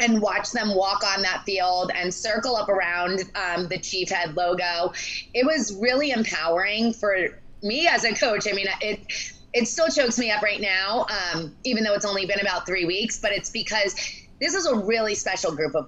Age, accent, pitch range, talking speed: 20-39, American, 195-245 Hz, 205 wpm